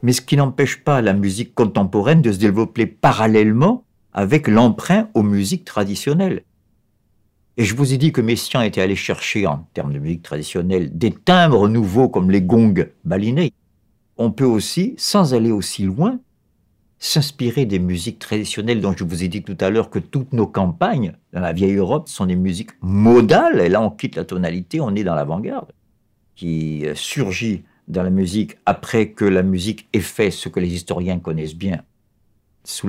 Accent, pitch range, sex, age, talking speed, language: French, 90-115 Hz, male, 50-69, 180 wpm, French